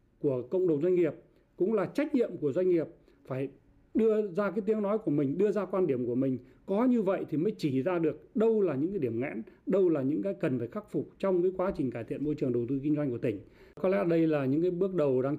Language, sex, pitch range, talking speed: Vietnamese, male, 135-190 Hz, 275 wpm